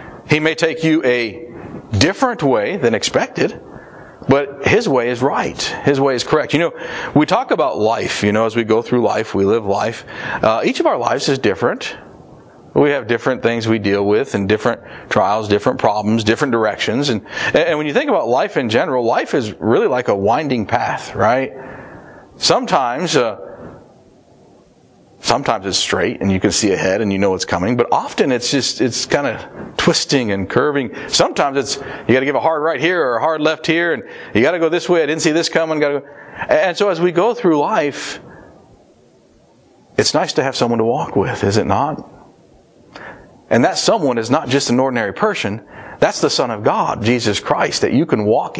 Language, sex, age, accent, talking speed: English, male, 40-59, American, 200 wpm